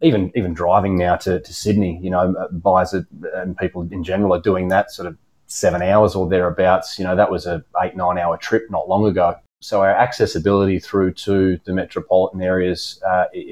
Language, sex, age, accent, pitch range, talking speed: English, male, 30-49, Australian, 90-100 Hz, 200 wpm